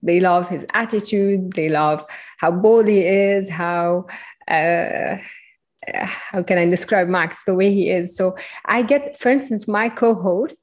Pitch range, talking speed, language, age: 175-215 Hz, 160 wpm, English, 20-39